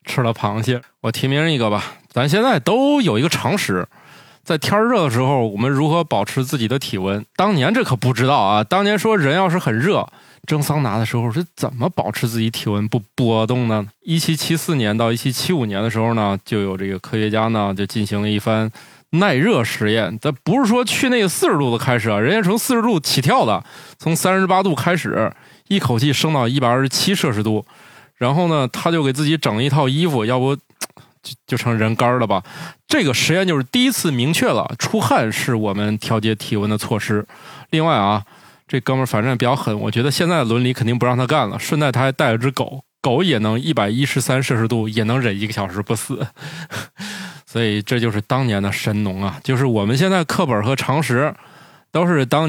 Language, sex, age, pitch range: Chinese, male, 20-39, 110-155 Hz